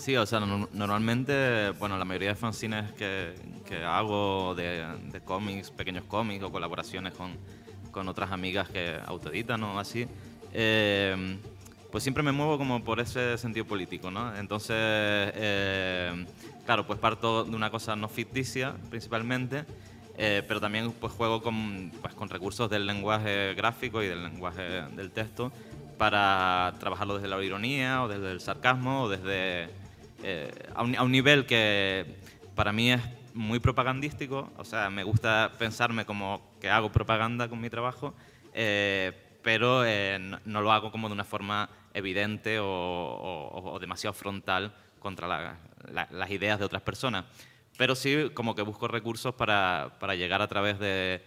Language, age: Spanish, 20-39